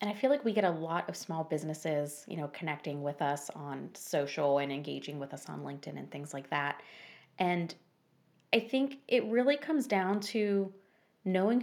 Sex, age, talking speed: female, 20-39, 190 wpm